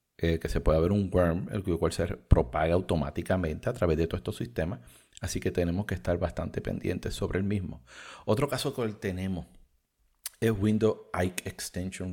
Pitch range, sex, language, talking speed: 95-110 Hz, male, English, 180 wpm